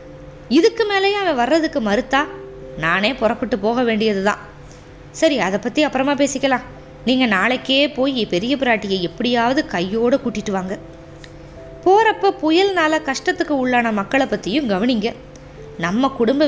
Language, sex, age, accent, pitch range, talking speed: Tamil, female, 20-39, native, 200-275 Hz, 115 wpm